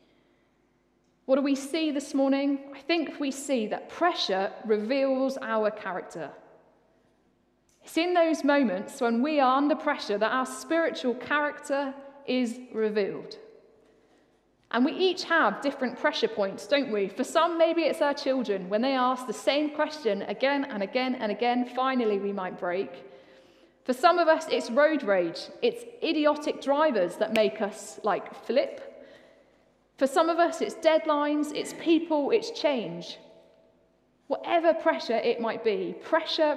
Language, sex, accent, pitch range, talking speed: English, female, British, 225-305 Hz, 150 wpm